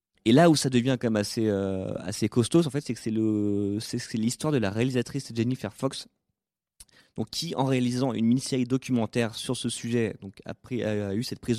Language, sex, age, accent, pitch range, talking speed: French, male, 30-49, French, 110-145 Hz, 215 wpm